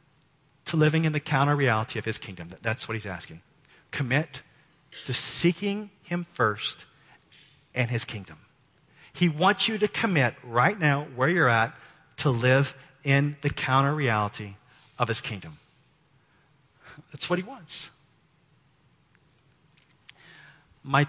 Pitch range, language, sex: 125-155 Hz, English, male